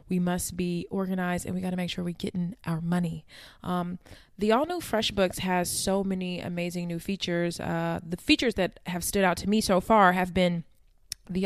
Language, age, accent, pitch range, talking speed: English, 20-39, American, 170-195 Hz, 200 wpm